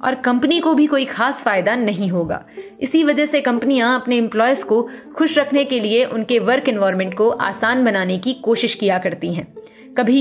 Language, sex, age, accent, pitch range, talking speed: Hindi, female, 20-39, native, 210-275 Hz, 190 wpm